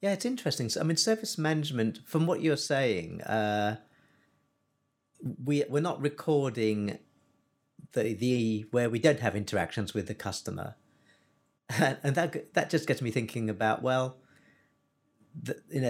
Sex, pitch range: male, 105-145 Hz